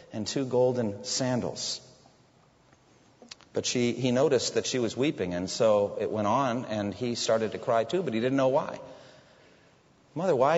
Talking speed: 170 wpm